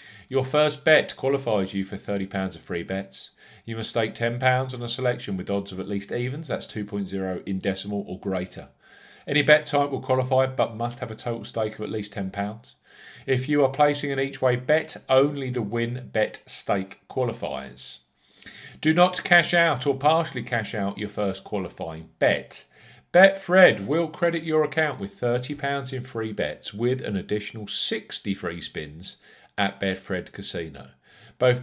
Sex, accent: male, British